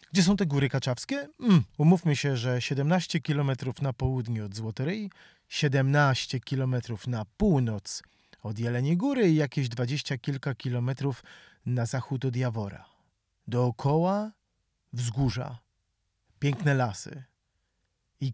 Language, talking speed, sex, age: Polish, 115 wpm, male, 40-59